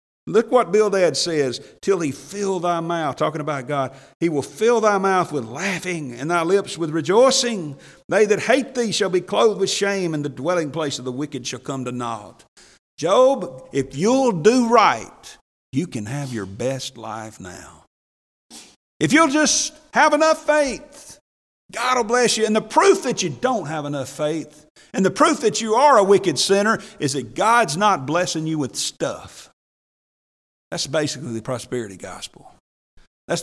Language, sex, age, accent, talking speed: English, male, 50-69, American, 175 wpm